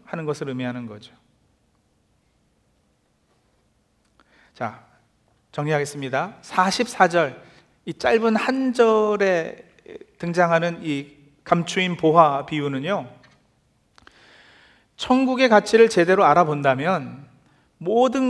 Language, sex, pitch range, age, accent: Korean, male, 150-215 Hz, 40-59, native